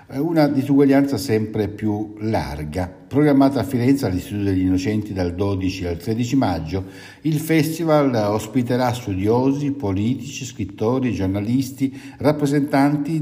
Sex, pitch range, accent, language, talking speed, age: male, 100-140 Hz, native, Italian, 110 wpm, 60-79